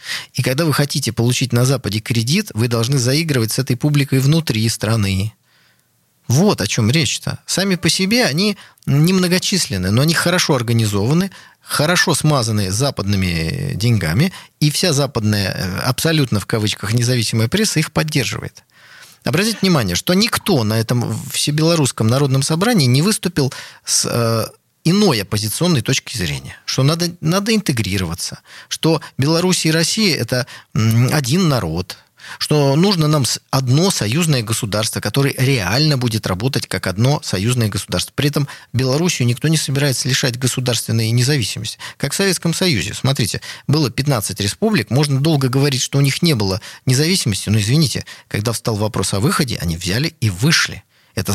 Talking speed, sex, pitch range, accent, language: 145 wpm, male, 110-155 Hz, native, Russian